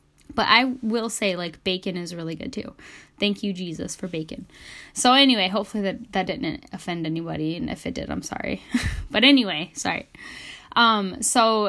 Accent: American